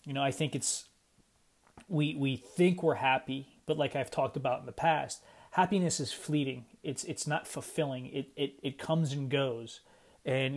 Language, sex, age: English, male, 30-49